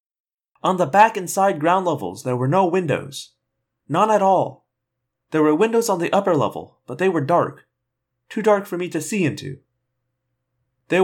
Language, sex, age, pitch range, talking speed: English, male, 30-49, 140-190 Hz, 180 wpm